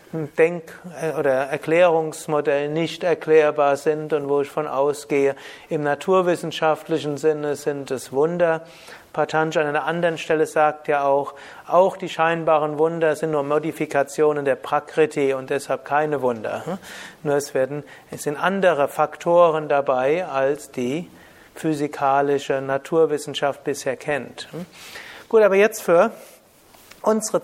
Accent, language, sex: German, German, male